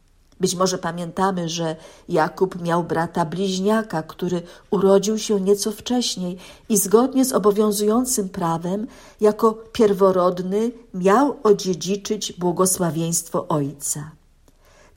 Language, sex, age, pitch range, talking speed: Polish, female, 50-69, 175-220 Hz, 100 wpm